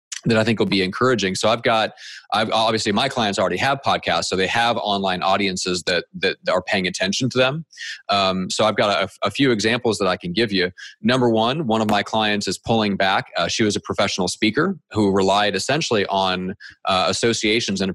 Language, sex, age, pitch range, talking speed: English, male, 30-49, 95-115 Hz, 215 wpm